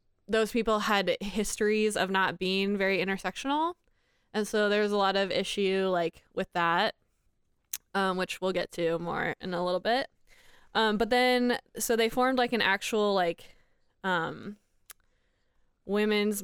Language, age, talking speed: English, 20-39, 150 wpm